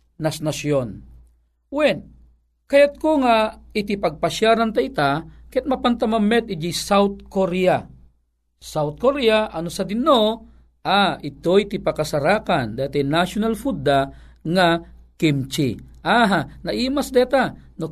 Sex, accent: male, native